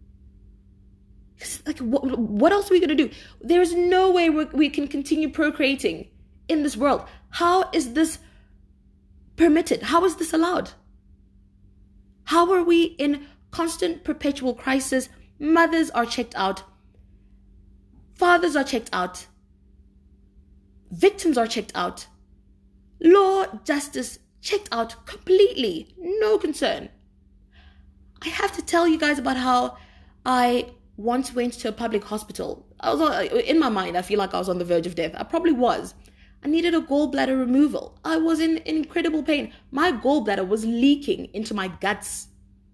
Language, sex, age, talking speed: English, female, 20-39, 145 wpm